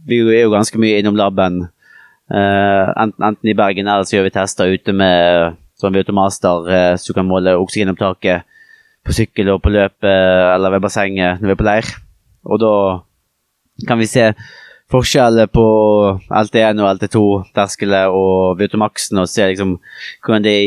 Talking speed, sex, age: 175 wpm, male, 30-49